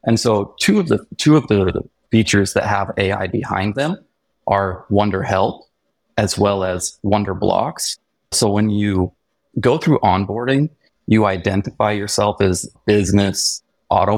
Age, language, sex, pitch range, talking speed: 30-49, English, male, 100-120 Hz, 145 wpm